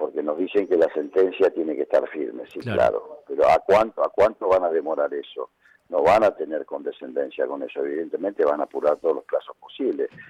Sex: male